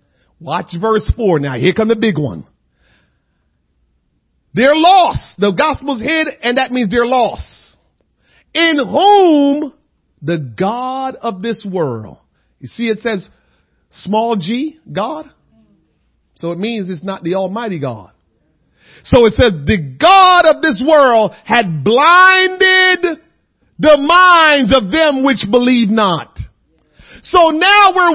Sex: male